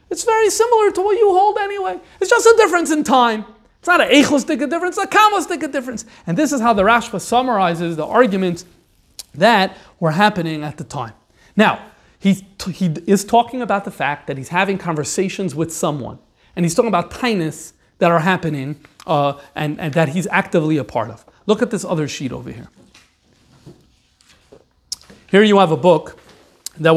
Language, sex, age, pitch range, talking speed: English, male, 30-49, 155-225 Hz, 180 wpm